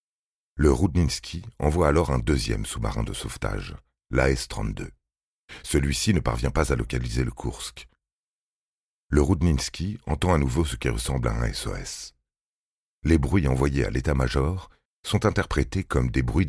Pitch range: 65-85 Hz